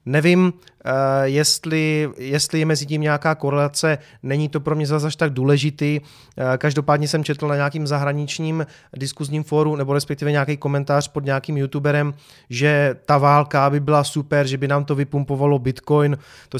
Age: 30-49